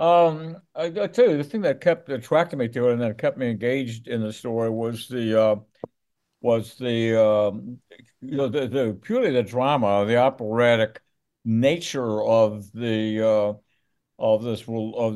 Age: 60-79